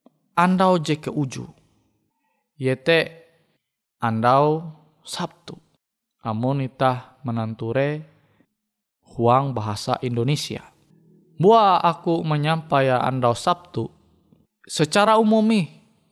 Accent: native